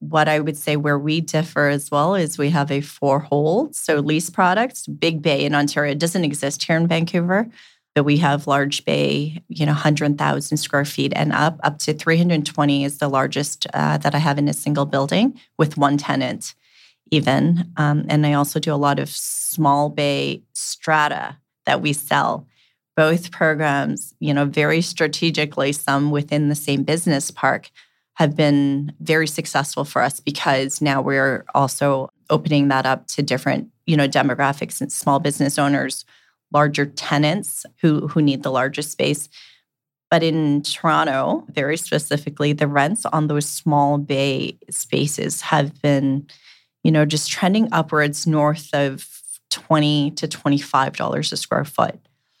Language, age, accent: English, 30-49, American